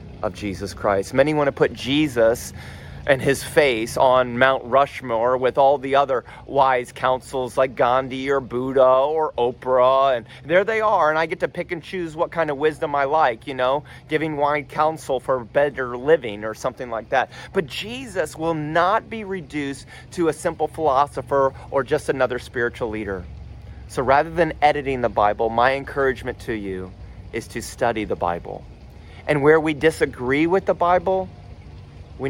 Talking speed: 175 wpm